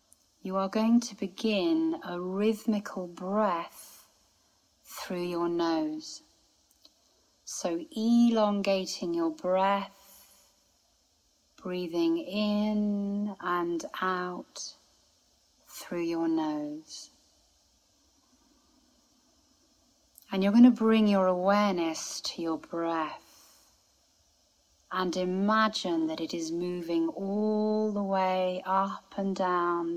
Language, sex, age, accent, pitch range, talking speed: English, female, 30-49, British, 170-220 Hz, 90 wpm